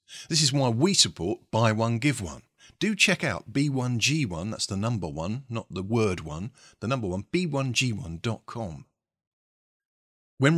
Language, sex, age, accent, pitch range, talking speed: English, male, 50-69, British, 100-140 Hz, 150 wpm